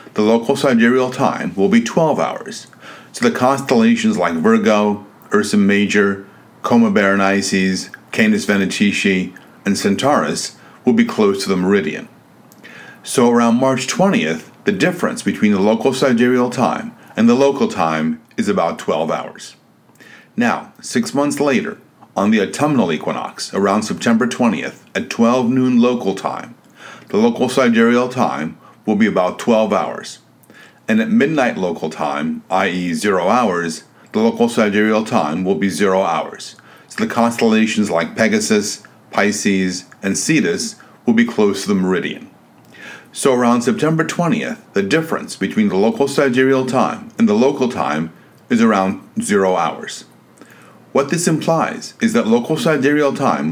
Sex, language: male, English